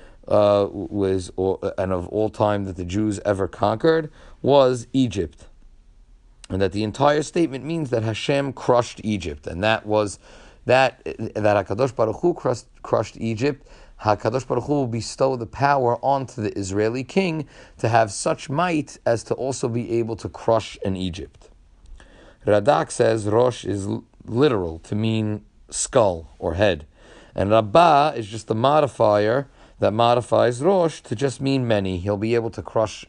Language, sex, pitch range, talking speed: English, male, 100-130 Hz, 155 wpm